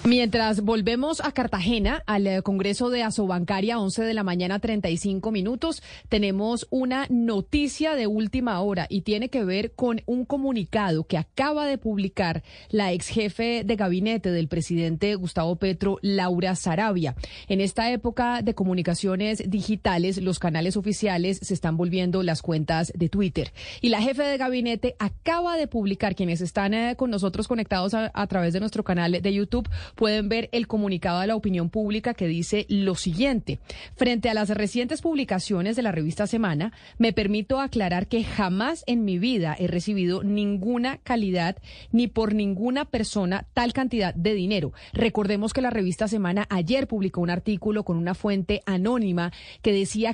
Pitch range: 185-230 Hz